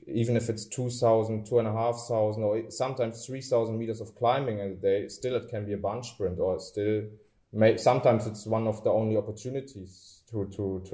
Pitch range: 105-120 Hz